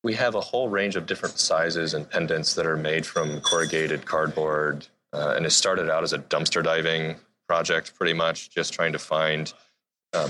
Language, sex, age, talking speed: English, male, 30-49, 190 wpm